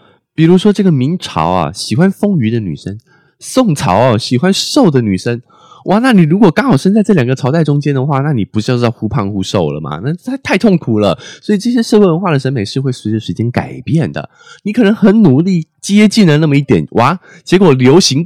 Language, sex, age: Chinese, male, 20-39